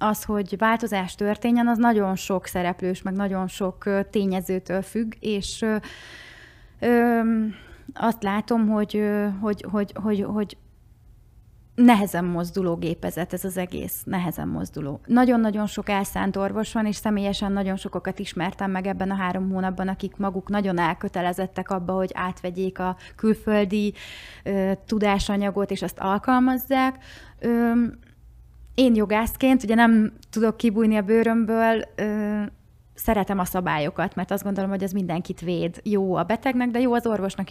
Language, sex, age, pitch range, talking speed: Hungarian, female, 30-49, 185-215 Hz, 125 wpm